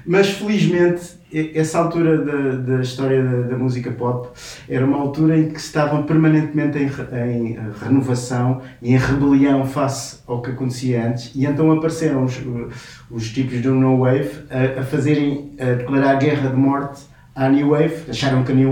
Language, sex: English, male